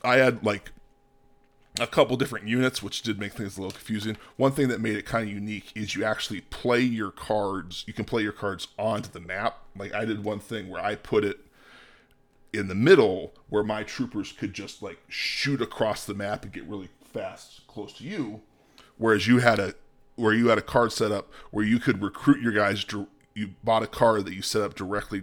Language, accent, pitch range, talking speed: English, American, 100-125 Hz, 220 wpm